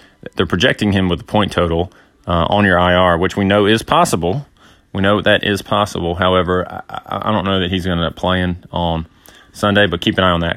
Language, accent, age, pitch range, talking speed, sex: English, American, 30-49, 85-105 Hz, 225 wpm, male